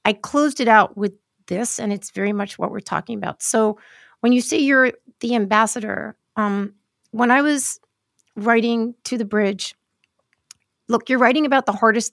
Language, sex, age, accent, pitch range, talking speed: English, female, 40-59, American, 205-245 Hz, 175 wpm